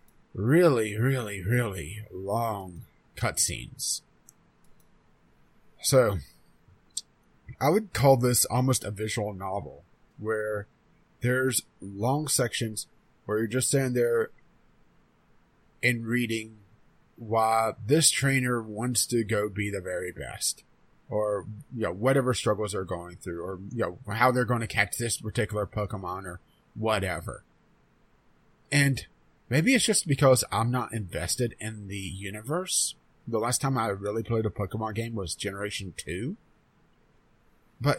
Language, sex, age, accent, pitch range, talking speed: English, male, 30-49, American, 105-130 Hz, 130 wpm